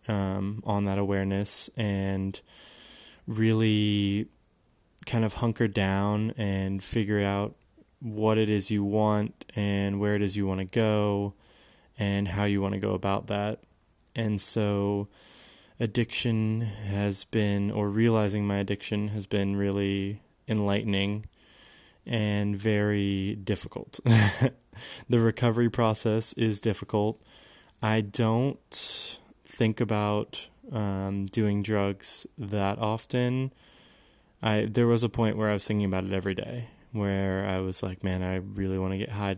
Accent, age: American, 20-39